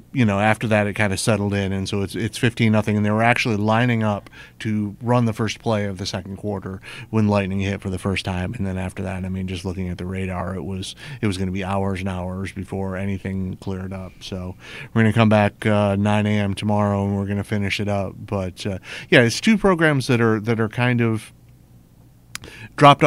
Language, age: English, 30-49